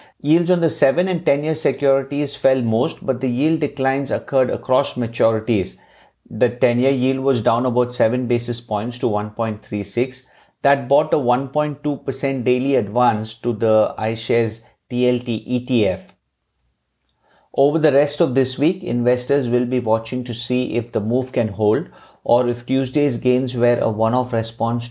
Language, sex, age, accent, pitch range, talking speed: English, male, 50-69, Indian, 110-130 Hz, 150 wpm